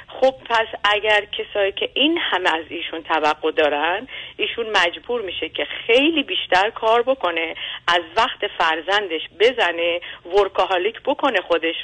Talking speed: 130 wpm